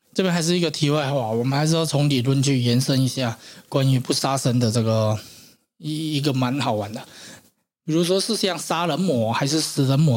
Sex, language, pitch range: male, Chinese, 120-155 Hz